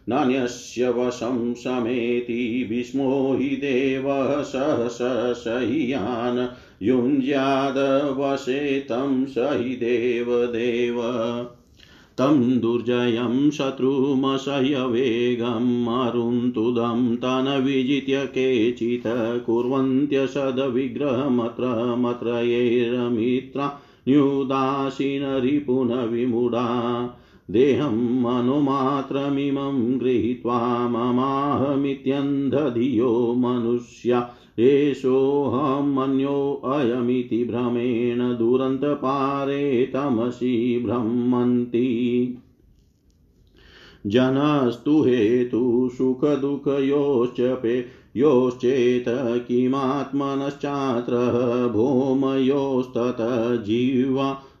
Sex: male